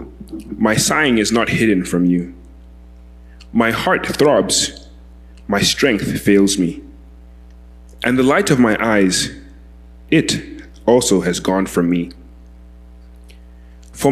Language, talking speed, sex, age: English, 115 wpm, male, 30-49